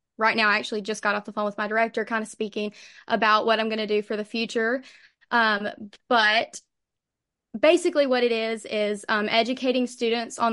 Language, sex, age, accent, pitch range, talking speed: English, female, 20-39, American, 210-230 Hz, 200 wpm